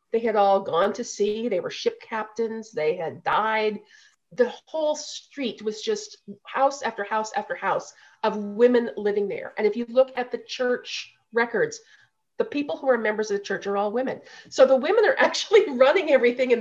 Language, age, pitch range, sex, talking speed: English, 30-49, 205-260 Hz, female, 195 wpm